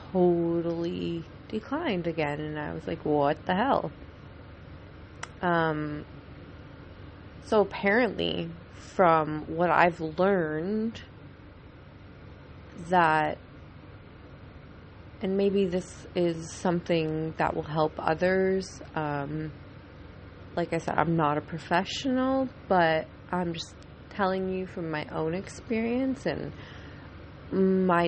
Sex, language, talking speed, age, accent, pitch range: female, English, 100 wpm, 20-39, American, 150-185 Hz